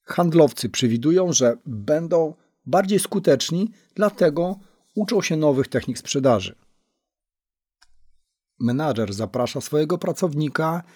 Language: Polish